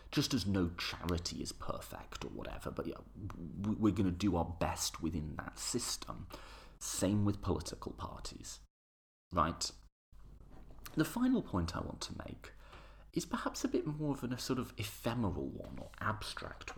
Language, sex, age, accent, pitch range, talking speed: English, male, 30-49, British, 80-120 Hz, 155 wpm